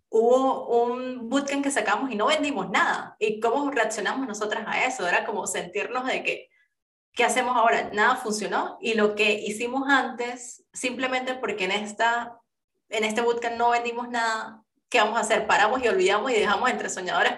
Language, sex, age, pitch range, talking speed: Spanish, female, 30-49, 205-250 Hz, 175 wpm